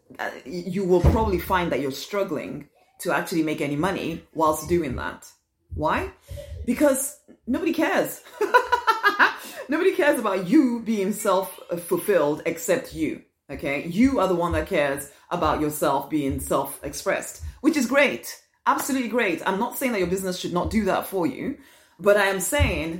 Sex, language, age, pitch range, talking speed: female, English, 30-49, 185-275 Hz, 155 wpm